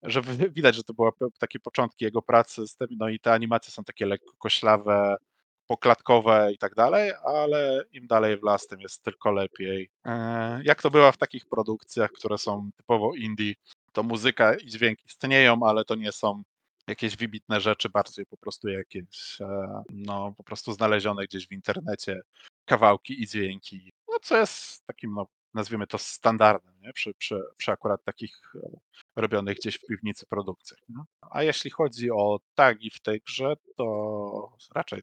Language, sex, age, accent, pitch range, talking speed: Polish, male, 20-39, native, 100-115 Hz, 170 wpm